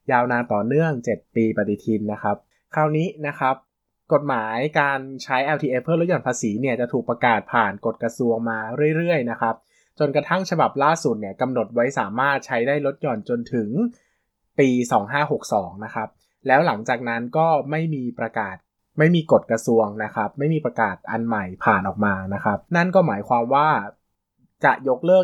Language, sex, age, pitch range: Thai, male, 20-39, 115-145 Hz